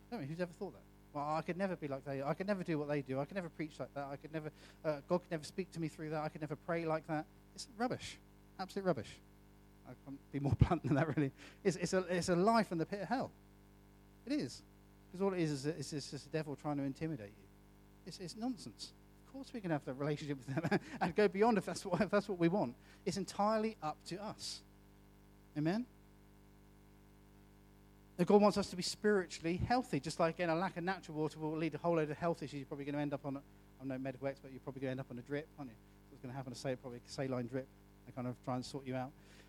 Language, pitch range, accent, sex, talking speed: English, 100-170 Hz, British, male, 270 wpm